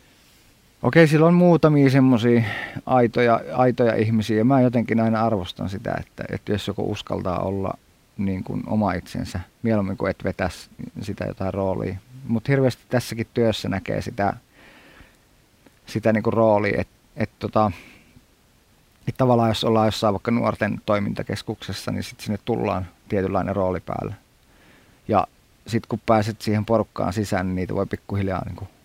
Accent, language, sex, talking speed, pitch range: native, Finnish, male, 150 wpm, 100-120 Hz